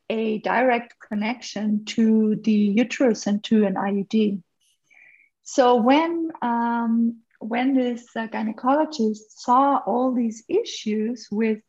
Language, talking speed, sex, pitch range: English, 110 wpm, female, 220-270 Hz